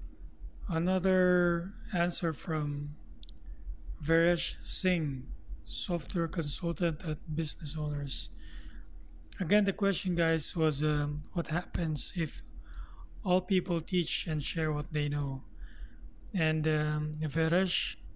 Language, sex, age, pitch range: English, male, 20-39, 135-170 Hz